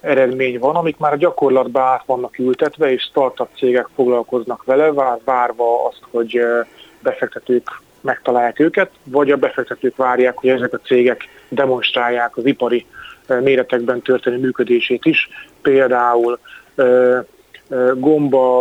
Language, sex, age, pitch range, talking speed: Hungarian, male, 30-49, 125-145 Hz, 115 wpm